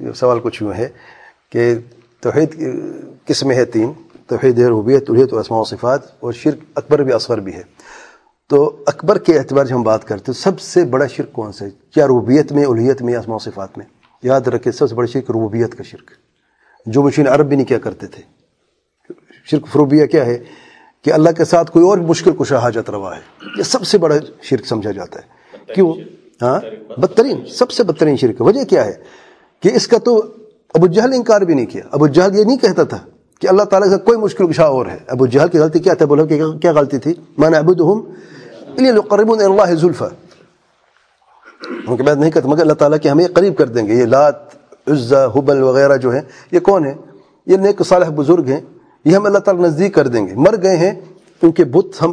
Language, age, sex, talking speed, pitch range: English, 40-59, male, 150 wpm, 135-185 Hz